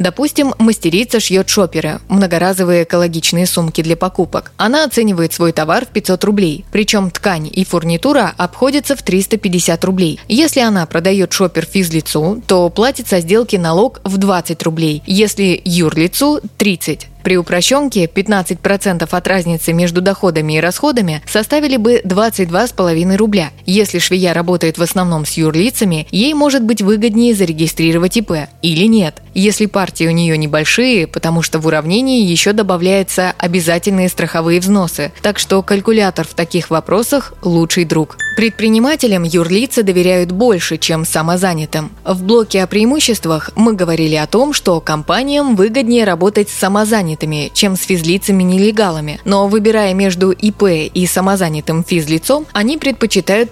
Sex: female